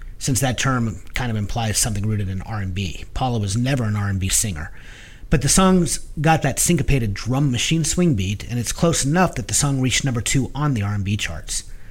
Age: 30-49